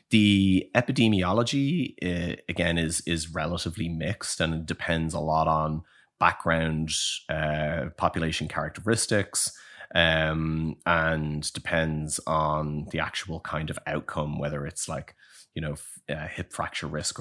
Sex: male